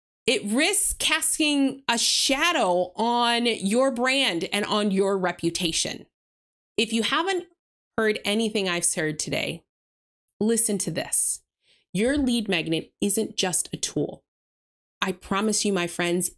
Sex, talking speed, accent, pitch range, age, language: female, 130 wpm, American, 195-260 Hz, 30-49, English